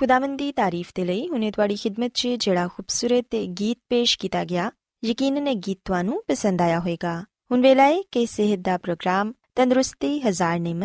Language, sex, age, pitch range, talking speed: Punjabi, female, 20-39, 180-255 Hz, 85 wpm